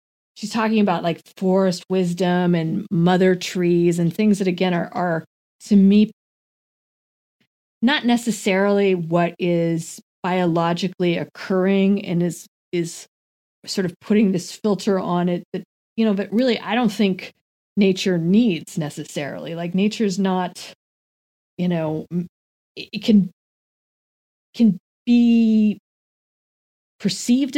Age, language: 20-39, English